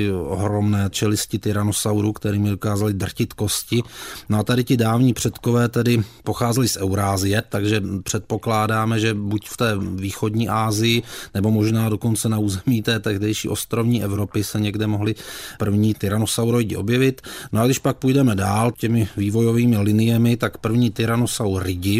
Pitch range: 105-115 Hz